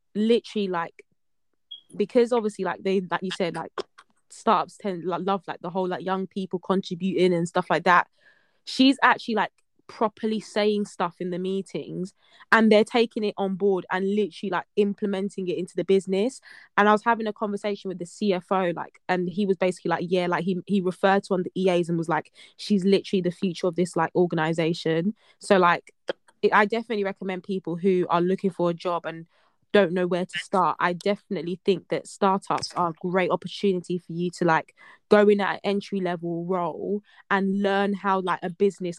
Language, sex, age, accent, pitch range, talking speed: English, female, 20-39, British, 175-200 Hz, 195 wpm